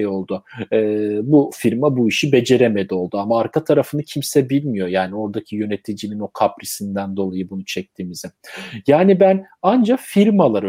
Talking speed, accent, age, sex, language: 140 wpm, native, 40-59, male, Turkish